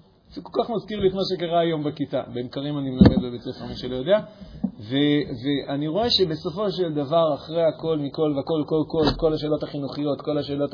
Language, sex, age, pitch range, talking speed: Hebrew, male, 40-59, 140-180 Hz, 190 wpm